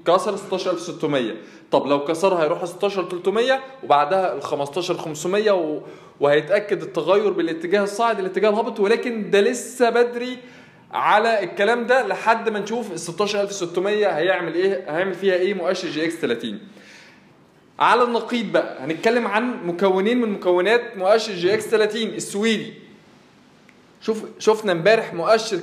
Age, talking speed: 20-39, 120 wpm